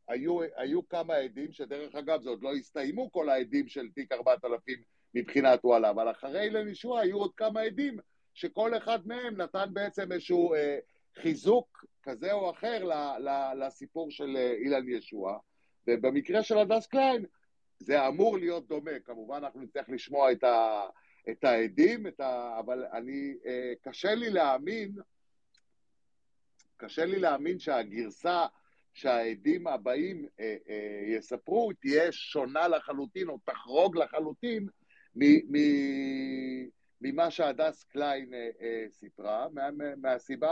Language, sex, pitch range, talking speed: Hebrew, male, 130-215 Hz, 130 wpm